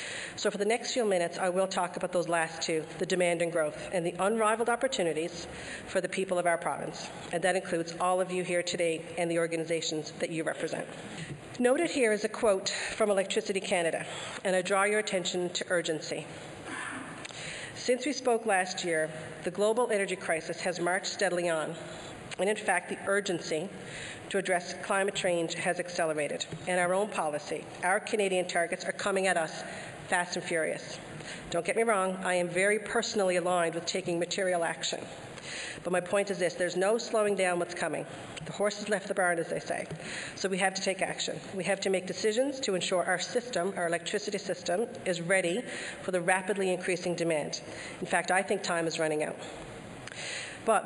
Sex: female